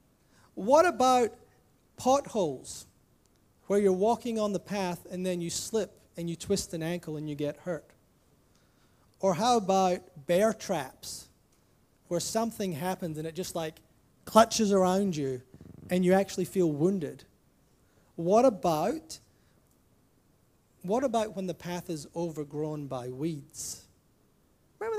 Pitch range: 155-205 Hz